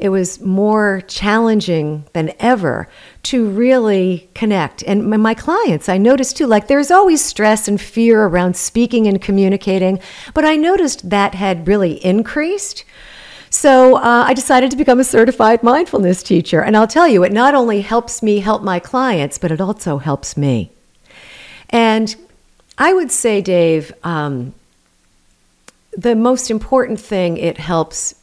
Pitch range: 155-220 Hz